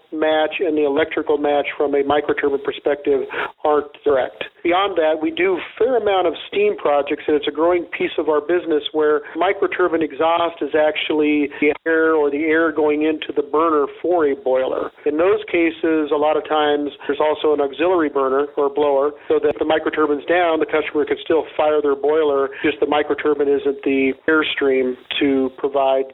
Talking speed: 185 wpm